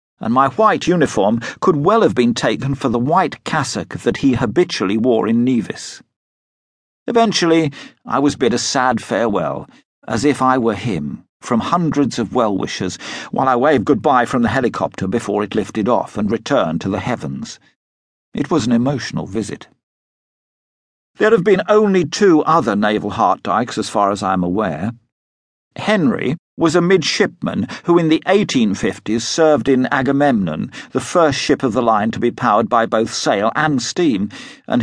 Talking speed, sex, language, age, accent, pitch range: 165 wpm, male, English, 50-69, British, 110-165 Hz